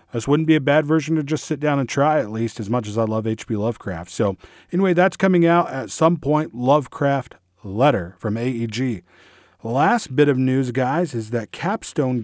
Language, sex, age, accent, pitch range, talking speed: English, male, 40-59, American, 110-140 Hz, 200 wpm